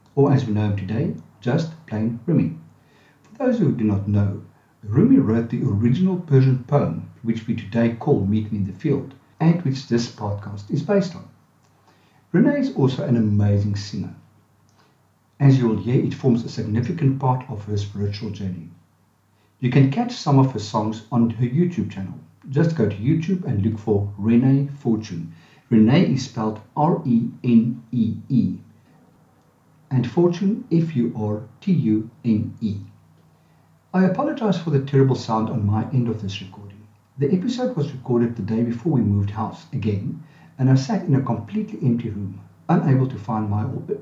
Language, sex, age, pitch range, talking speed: English, male, 50-69, 105-140 Hz, 160 wpm